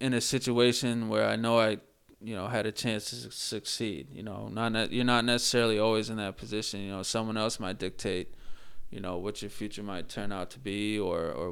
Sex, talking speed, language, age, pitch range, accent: male, 220 wpm, English, 20-39, 105-115 Hz, American